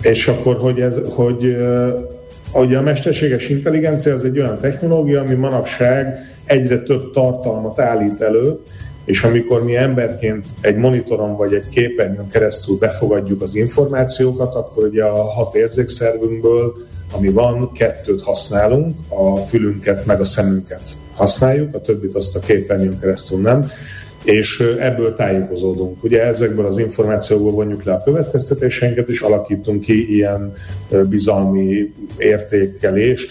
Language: Hungarian